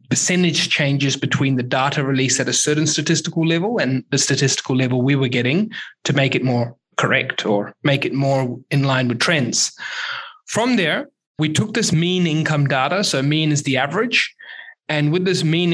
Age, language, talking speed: 20-39, English, 185 wpm